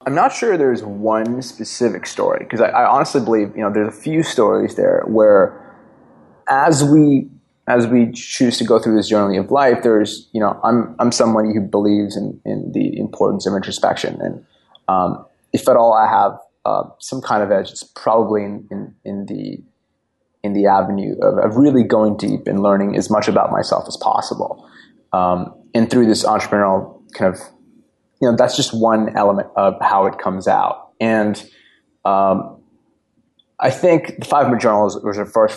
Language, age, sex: English, 20-39, male